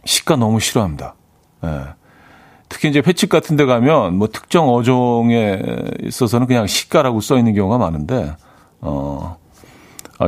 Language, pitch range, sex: Korean, 105-150 Hz, male